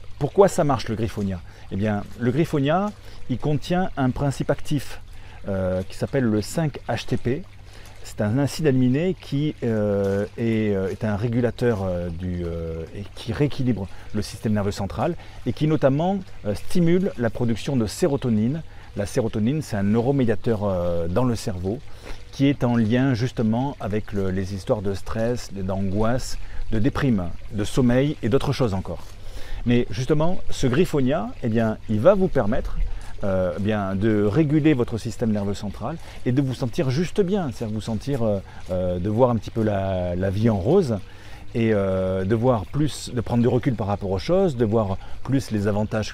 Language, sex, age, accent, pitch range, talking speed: French, male, 40-59, French, 100-130 Hz, 175 wpm